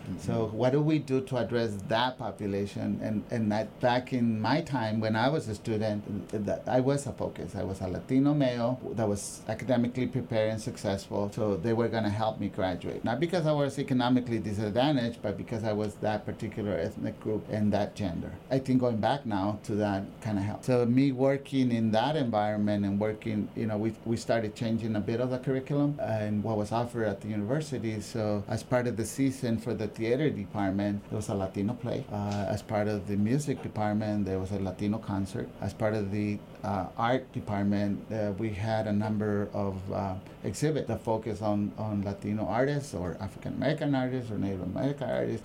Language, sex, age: English, male, 30-49